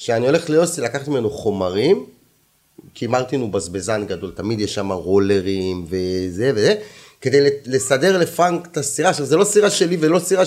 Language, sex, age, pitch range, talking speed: Hebrew, male, 30-49, 100-150 Hz, 160 wpm